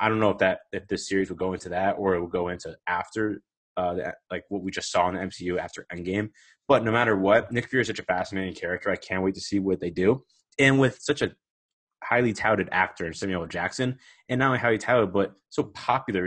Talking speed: 245 wpm